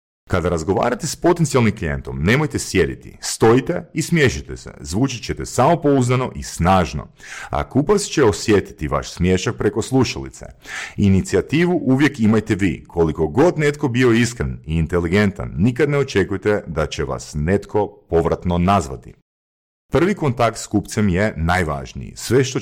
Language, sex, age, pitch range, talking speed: Croatian, male, 40-59, 75-115 Hz, 140 wpm